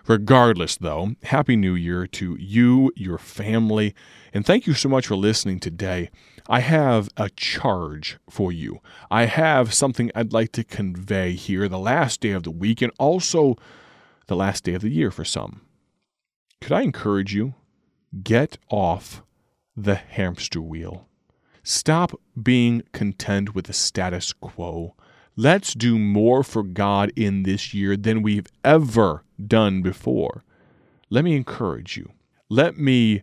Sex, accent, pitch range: male, American, 95-120 Hz